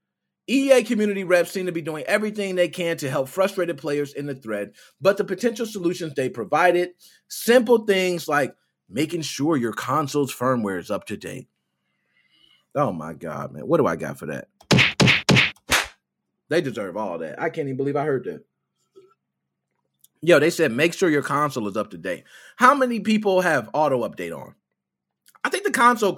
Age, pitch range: 30-49, 125-200 Hz